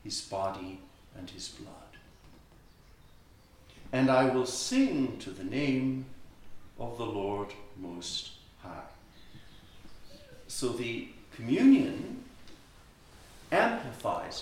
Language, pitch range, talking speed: English, 95-130 Hz, 85 wpm